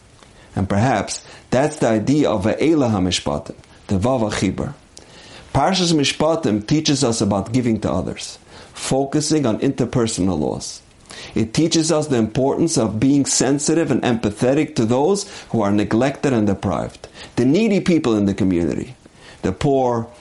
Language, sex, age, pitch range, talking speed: English, male, 50-69, 105-145 Hz, 140 wpm